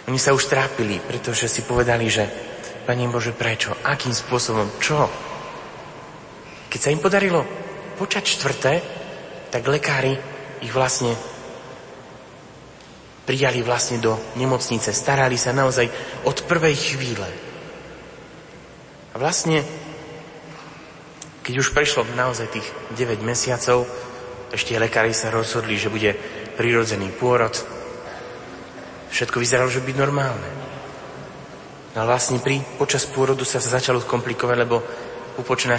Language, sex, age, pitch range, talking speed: Slovak, male, 30-49, 115-135 Hz, 115 wpm